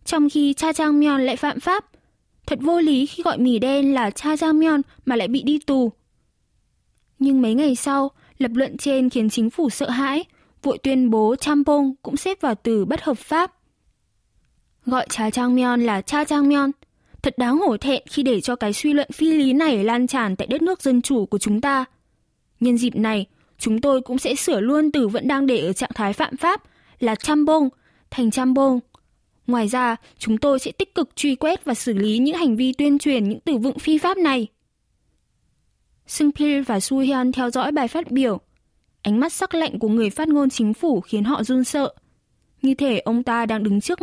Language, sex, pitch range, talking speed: Vietnamese, female, 235-290 Hz, 205 wpm